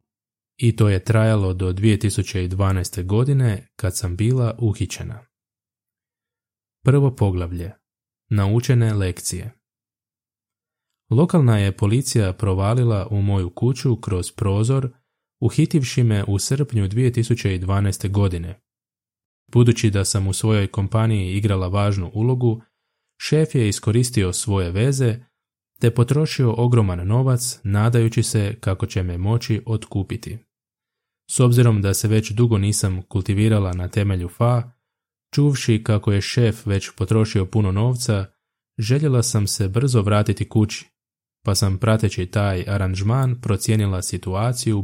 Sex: male